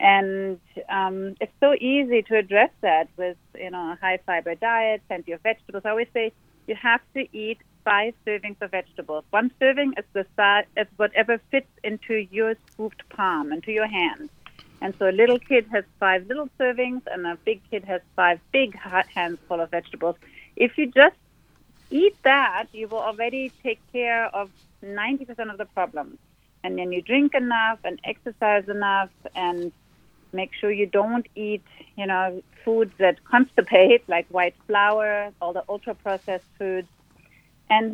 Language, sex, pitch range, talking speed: English, female, 185-225 Hz, 165 wpm